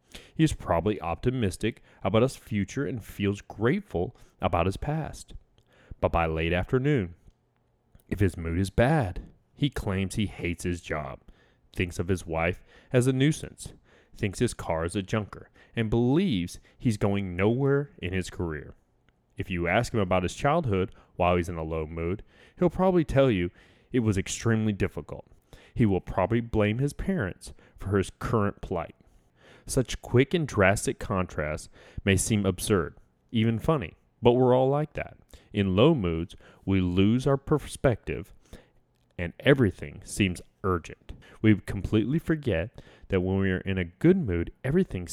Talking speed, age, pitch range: 155 wpm, 30-49, 90-125 Hz